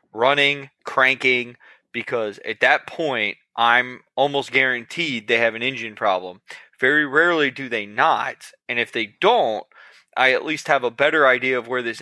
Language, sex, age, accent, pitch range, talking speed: English, male, 20-39, American, 120-135 Hz, 165 wpm